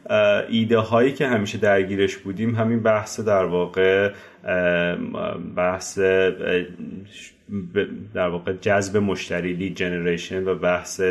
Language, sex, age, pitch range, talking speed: Persian, male, 30-49, 90-105 Hz, 105 wpm